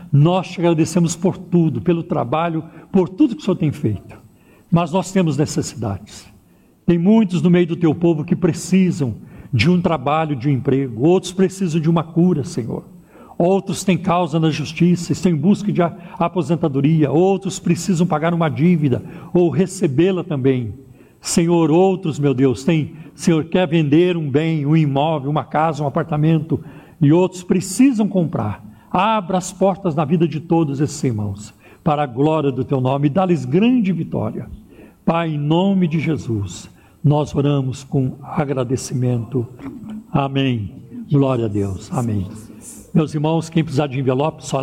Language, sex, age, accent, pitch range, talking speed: Portuguese, male, 60-79, Brazilian, 135-175 Hz, 155 wpm